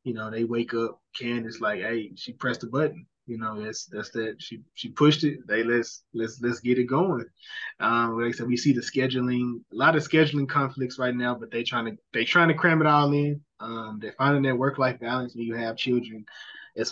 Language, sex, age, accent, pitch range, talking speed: English, male, 20-39, American, 120-145 Hz, 235 wpm